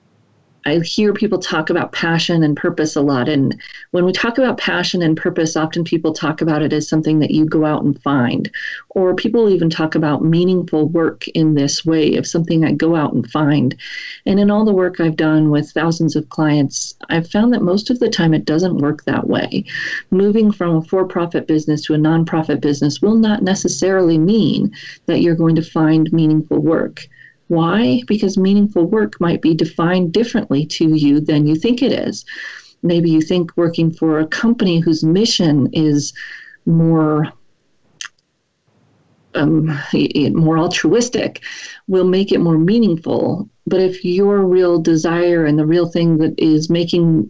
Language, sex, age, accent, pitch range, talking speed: English, female, 40-59, American, 155-185 Hz, 175 wpm